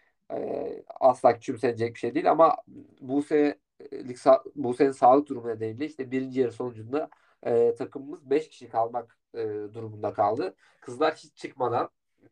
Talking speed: 110 wpm